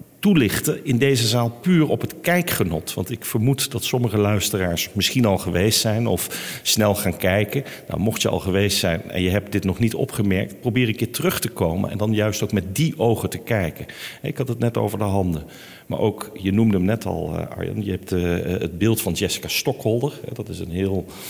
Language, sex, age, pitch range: Dutch, male, 50-69, 95-120 Hz